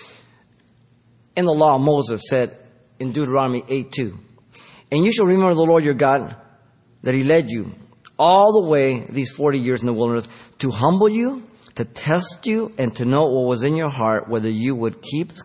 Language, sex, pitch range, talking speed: English, male, 115-145 Hz, 190 wpm